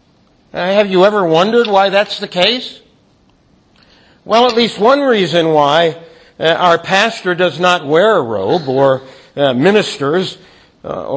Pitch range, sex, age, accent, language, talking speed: 165-225 Hz, male, 60-79, American, English, 145 wpm